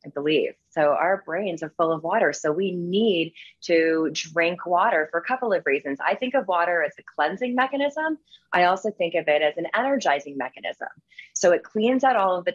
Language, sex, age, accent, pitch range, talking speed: English, female, 30-49, American, 170-210 Hz, 210 wpm